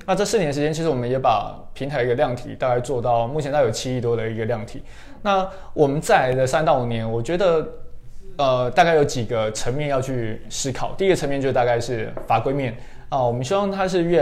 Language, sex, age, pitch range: Chinese, male, 20-39, 120-150 Hz